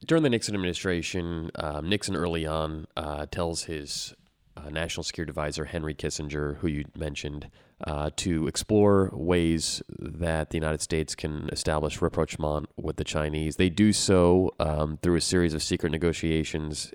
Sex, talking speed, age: male, 155 wpm, 30-49